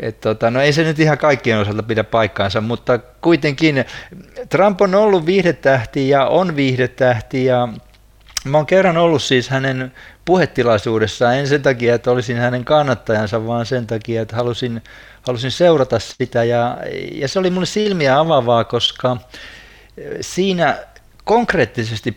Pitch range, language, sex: 115-155 Hz, Finnish, male